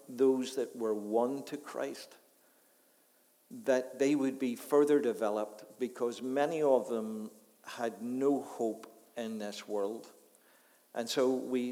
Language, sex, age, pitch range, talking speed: English, male, 50-69, 110-150 Hz, 130 wpm